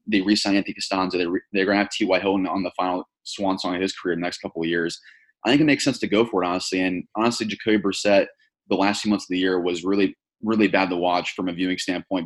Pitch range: 90-105 Hz